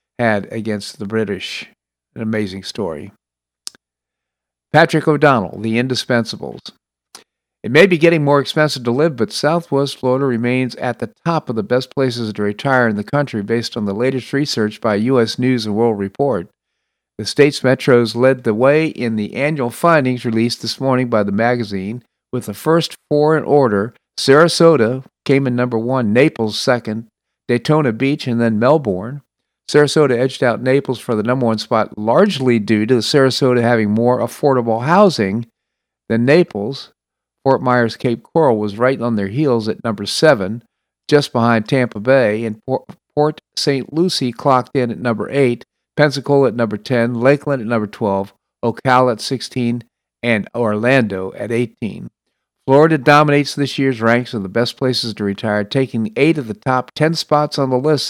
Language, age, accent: English, 50-69, American